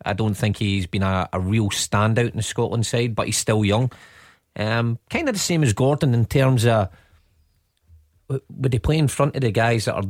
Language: English